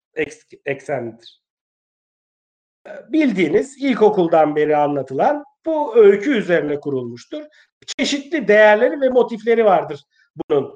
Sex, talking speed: male, 85 wpm